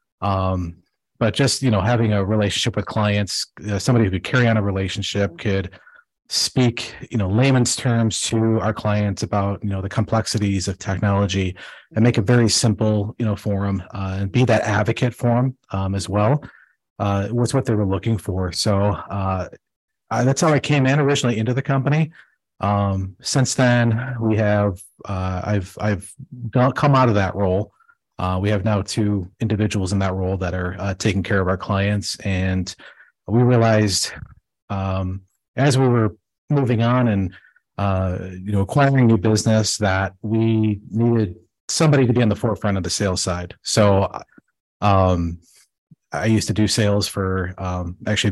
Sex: male